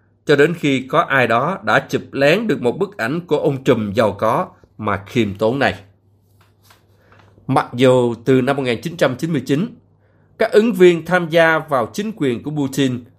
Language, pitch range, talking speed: Vietnamese, 105-170 Hz, 170 wpm